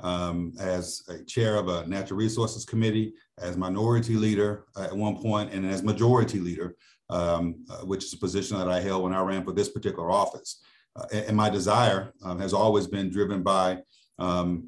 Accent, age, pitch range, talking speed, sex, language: American, 40-59, 95-110 Hz, 190 wpm, male, English